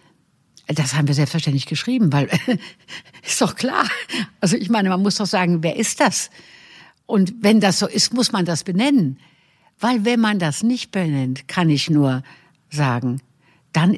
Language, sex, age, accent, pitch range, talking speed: English, female, 60-79, German, 160-225 Hz, 165 wpm